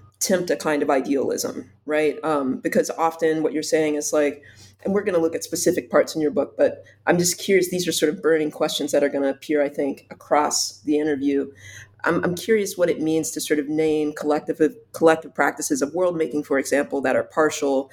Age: 20-39